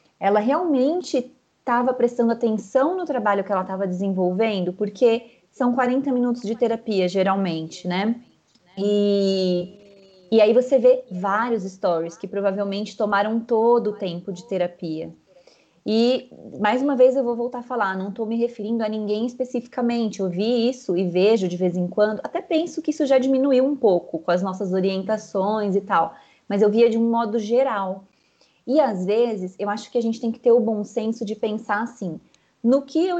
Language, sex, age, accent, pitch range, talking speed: Portuguese, female, 20-39, Brazilian, 190-240 Hz, 180 wpm